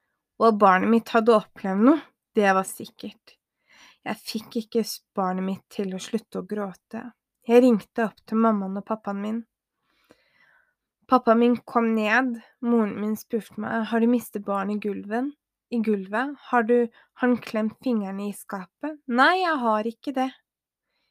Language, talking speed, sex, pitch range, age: Danish, 145 wpm, female, 210-250 Hz, 20-39